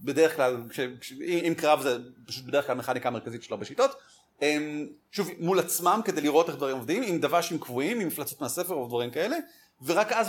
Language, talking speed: Hebrew, 200 wpm